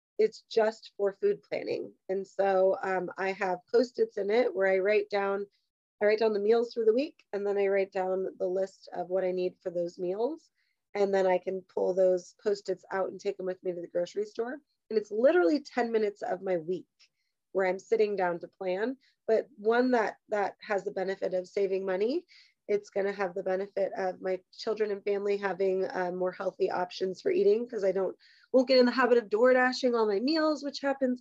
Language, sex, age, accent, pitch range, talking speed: English, female, 30-49, American, 190-250 Hz, 220 wpm